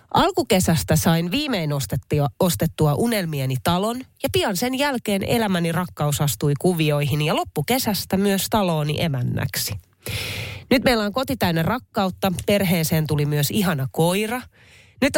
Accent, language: native, Finnish